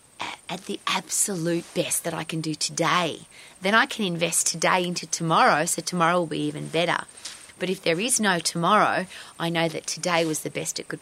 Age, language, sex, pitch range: 30-49, English, female, 165-225 Hz